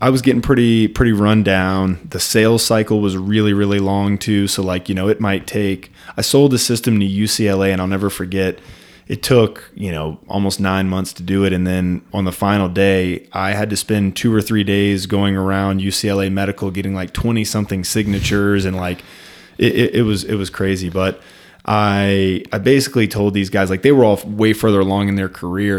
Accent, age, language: American, 20-39, English